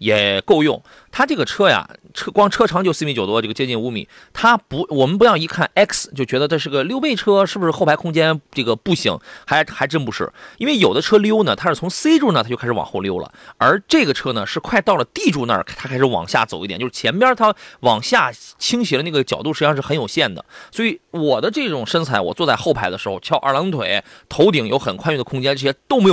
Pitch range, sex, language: 125-200 Hz, male, Chinese